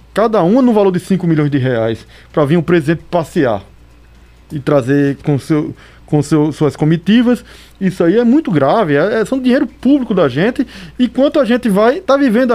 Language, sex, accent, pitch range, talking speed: Portuguese, male, Brazilian, 145-235 Hz, 195 wpm